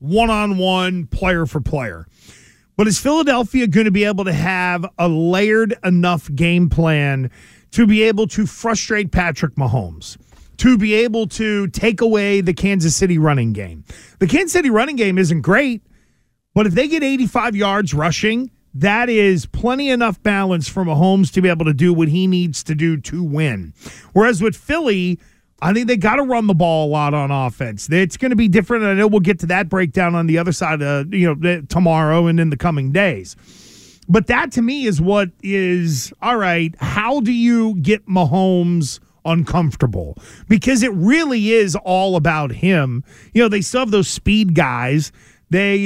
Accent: American